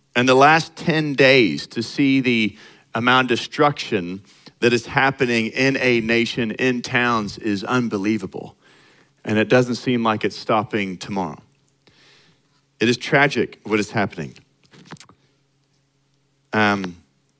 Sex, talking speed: male, 125 wpm